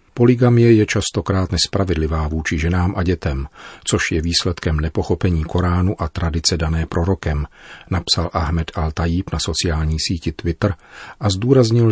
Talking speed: 130 wpm